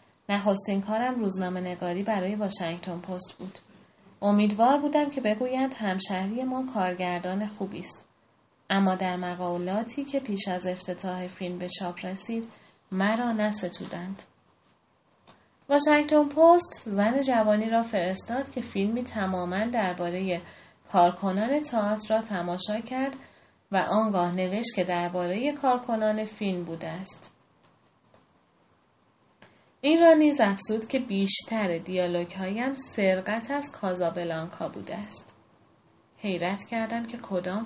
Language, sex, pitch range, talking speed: Persian, female, 185-235 Hz, 115 wpm